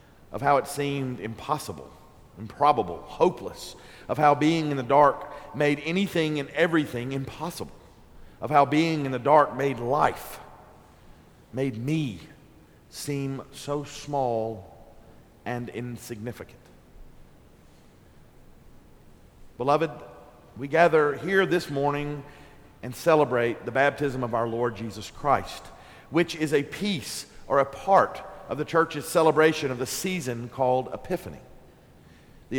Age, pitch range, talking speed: 50-69, 125-150 Hz, 120 wpm